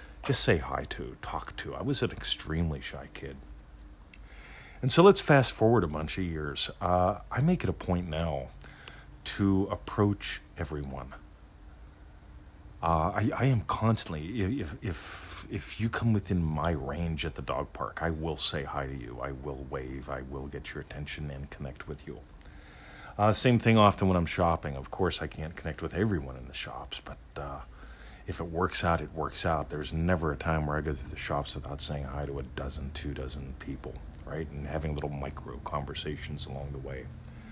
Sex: male